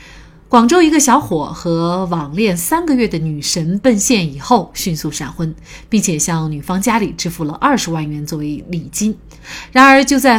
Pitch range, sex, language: 165-240 Hz, female, Chinese